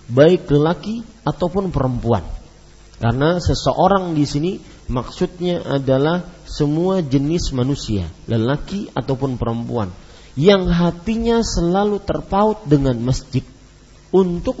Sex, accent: male, Indonesian